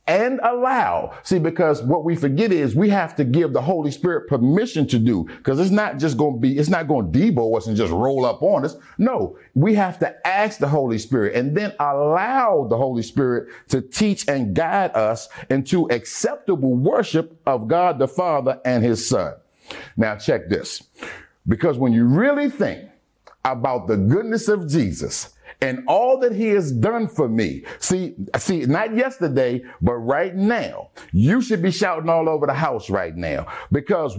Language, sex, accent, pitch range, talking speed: English, male, American, 130-210 Hz, 185 wpm